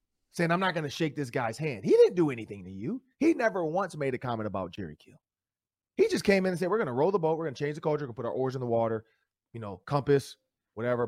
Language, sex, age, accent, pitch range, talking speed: English, male, 30-49, American, 130-205 Hz, 300 wpm